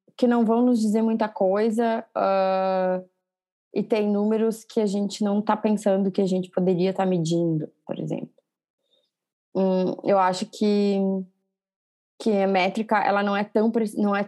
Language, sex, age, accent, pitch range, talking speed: Portuguese, female, 20-39, Brazilian, 190-225 Hz, 165 wpm